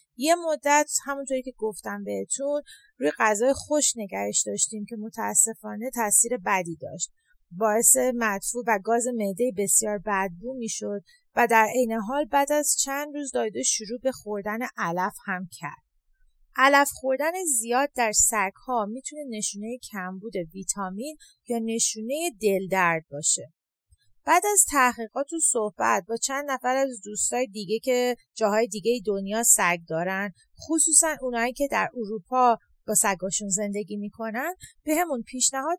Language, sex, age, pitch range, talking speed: English, female, 30-49, 195-270 Hz, 135 wpm